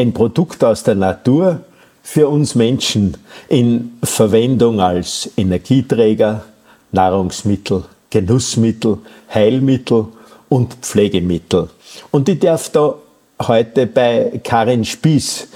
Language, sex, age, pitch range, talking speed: German, male, 50-69, 105-135 Hz, 95 wpm